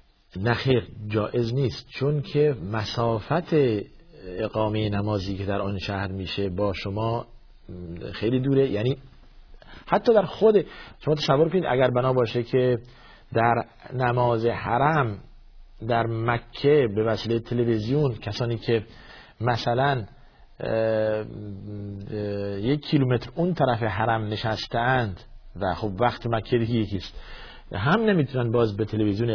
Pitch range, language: 110-130 Hz, Persian